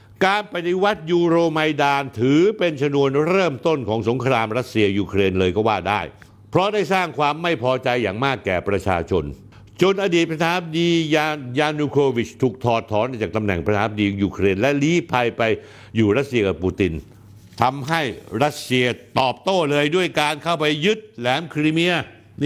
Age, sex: 60-79, male